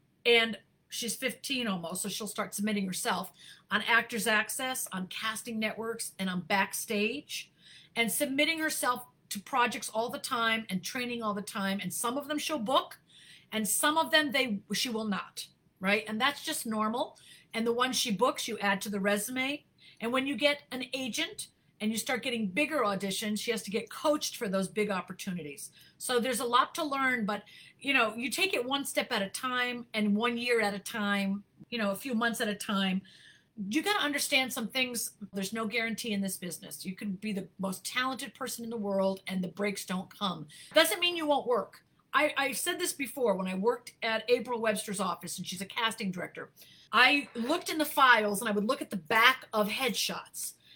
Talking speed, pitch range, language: 205 wpm, 200-255 Hz, English